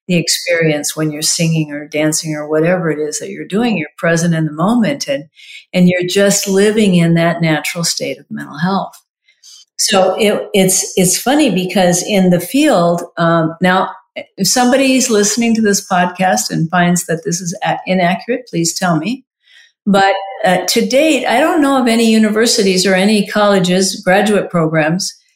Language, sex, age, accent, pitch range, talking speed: English, female, 50-69, American, 170-205 Hz, 170 wpm